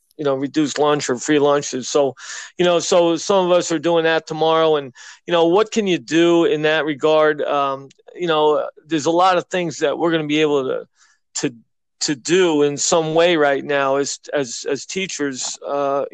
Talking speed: 210 wpm